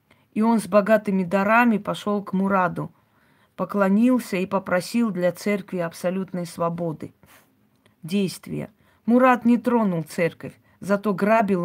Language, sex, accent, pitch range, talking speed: Russian, female, native, 180-225 Hz, 115 wpm